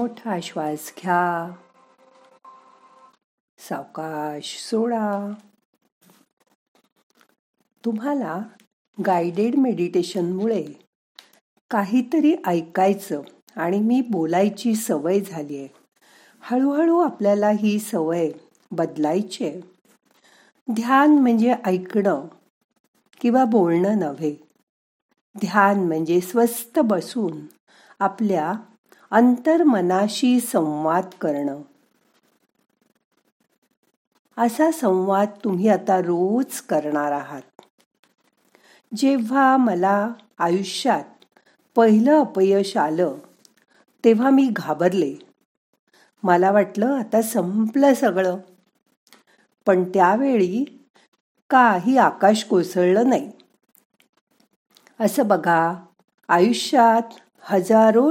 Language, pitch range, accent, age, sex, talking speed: Marathi, 180-240 Hz, native, 50-69, female, 70 wpm